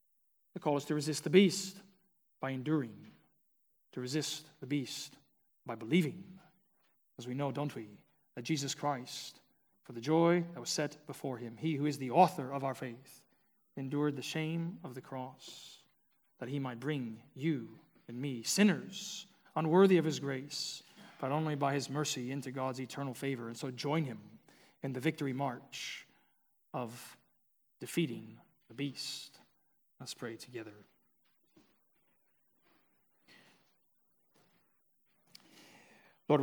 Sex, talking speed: male, 135 wpm